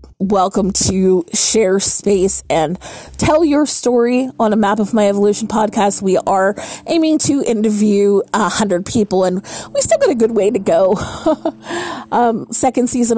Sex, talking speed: female, 160 wpm